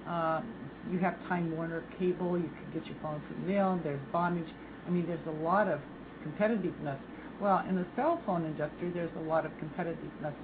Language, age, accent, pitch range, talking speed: English, 60-79, American, 155-180 Hz, 185 wpm